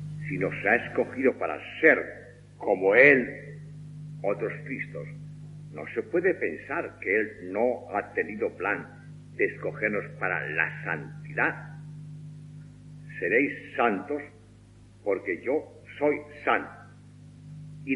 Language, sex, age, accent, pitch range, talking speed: Spanish, male, 60-79, Spanish, 120-150 Hz, 105 wpm